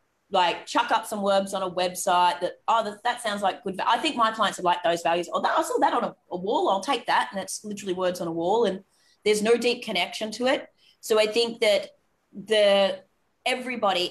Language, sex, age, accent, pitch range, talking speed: English, female, 30-49, Australian, 175-210 Hz, 235 wpm